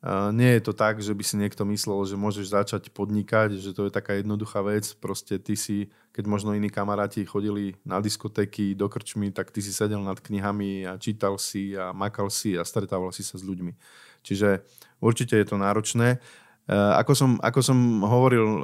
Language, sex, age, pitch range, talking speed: Slovak, male, 20-39, 100-115 Hz, 195 wpm